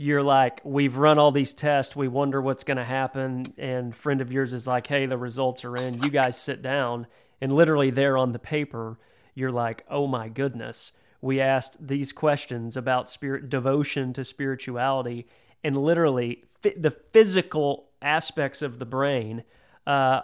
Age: 30-49